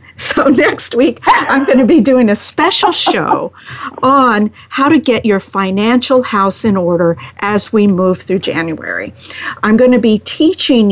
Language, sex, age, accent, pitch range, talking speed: English, female, 50-69, American, 180-250 Hz, 165 wpm